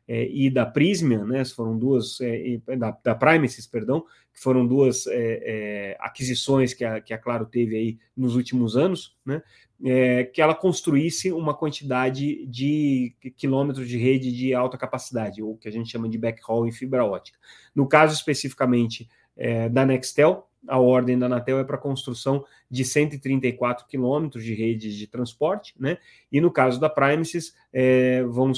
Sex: male